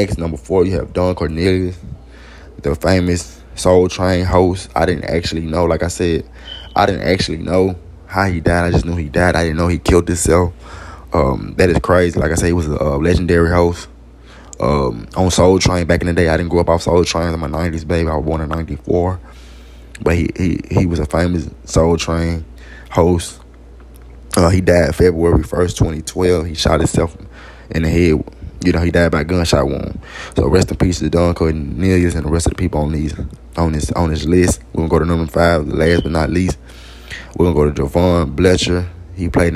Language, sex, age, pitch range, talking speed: English, male, 20-39, 75-90 Hz, 215 wpm